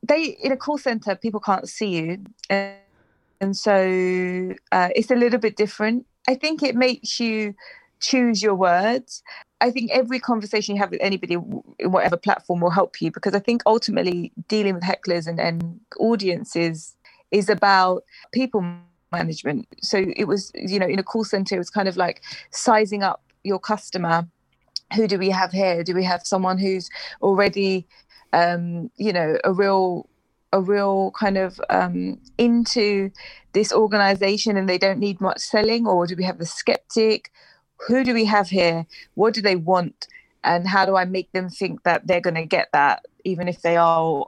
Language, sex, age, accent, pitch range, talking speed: English, female, 20-39, British, 180-215 Hz, 185 wpm